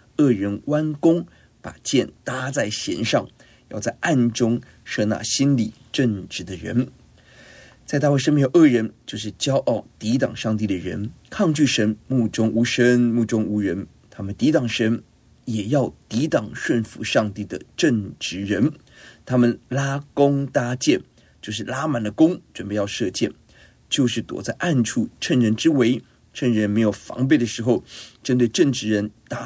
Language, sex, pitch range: Chinese, male, 110-130 Hz